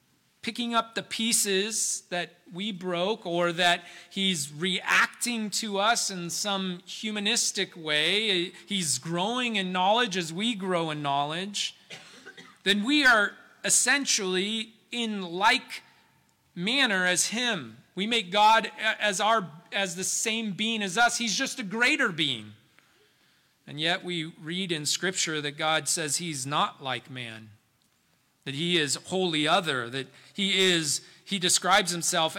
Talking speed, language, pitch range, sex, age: 135 wpm, English, 155-200 Hz, male, 40-59